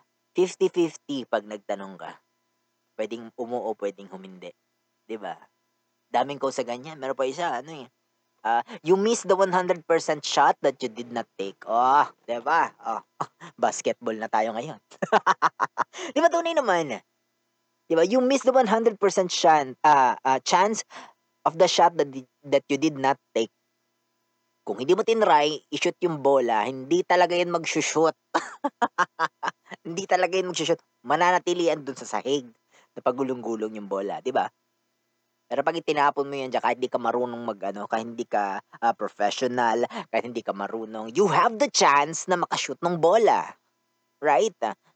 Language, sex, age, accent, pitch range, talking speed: Filipino, female, 20-39, native, 120-180 Hz, 150 wpm